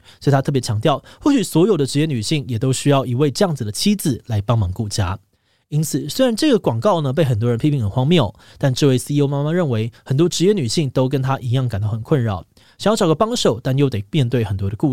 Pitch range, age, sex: 120-160 Hz, 20-39, male